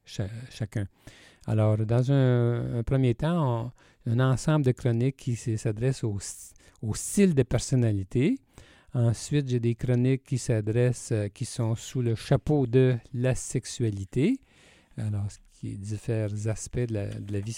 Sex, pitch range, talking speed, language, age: male, 110-135 Hz, 150 wpm, French, 50-69